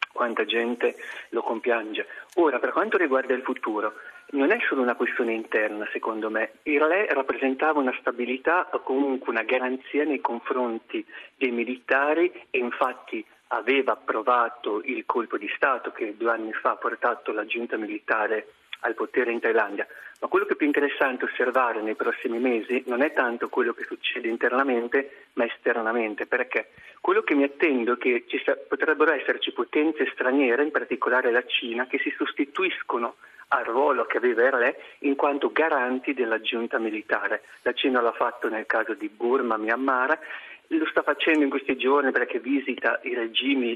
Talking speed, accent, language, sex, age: 165 wpm, native, Italian, male, 40-59